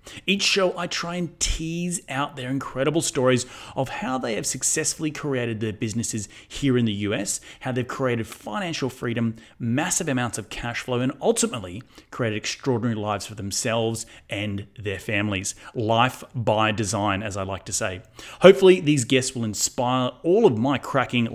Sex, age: male, 30-49